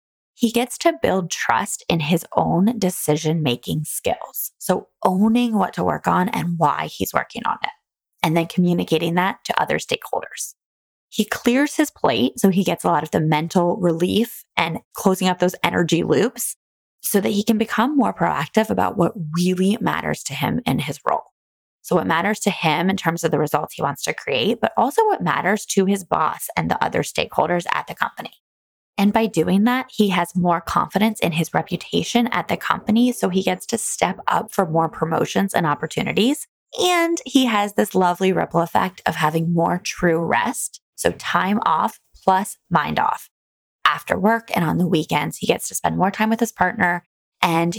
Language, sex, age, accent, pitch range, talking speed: English, female, 20-39, American, 170-225 Hz, 190 wpm